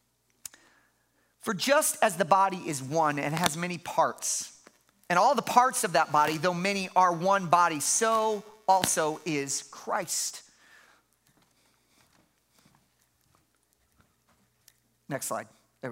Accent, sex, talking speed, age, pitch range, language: American, male, 115 wpm, 40-59, 165-225 Hz, English